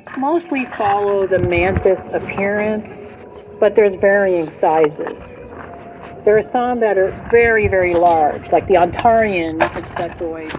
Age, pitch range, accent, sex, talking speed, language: 40-59, 175-215 Hz, American, female, 120 wpm, English